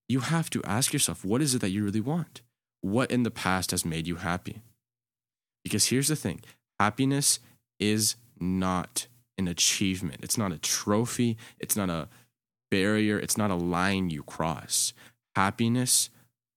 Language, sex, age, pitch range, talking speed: English, male, 20-39, 90-120 Hz, 160 wpm